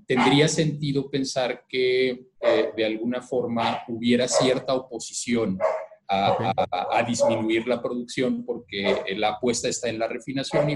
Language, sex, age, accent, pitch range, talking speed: Spanish, male, 40-59, Mexican, 110-130 Hz, 140 wpm